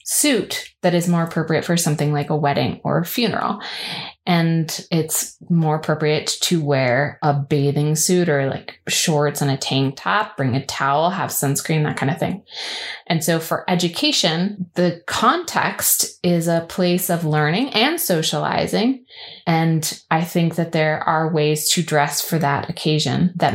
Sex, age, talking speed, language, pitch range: female, 20-39, 165 wpm, English, 150-175 Hz